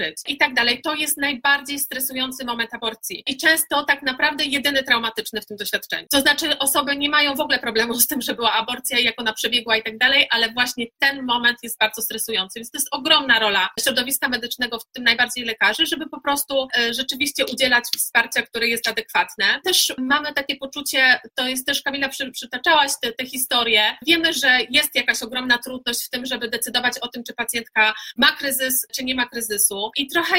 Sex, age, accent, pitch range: female, 30-49, native, 245-290 Hz